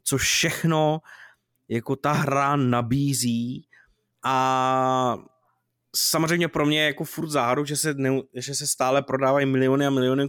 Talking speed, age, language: 130 wpm, 20-39, Czech